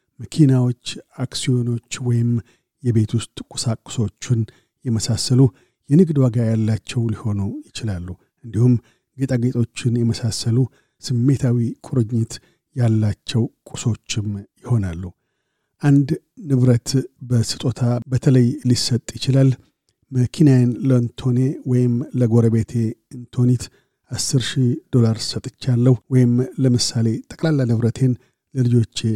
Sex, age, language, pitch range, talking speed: male, 50-69, Amharic, 115-130 Hz, 80 wpm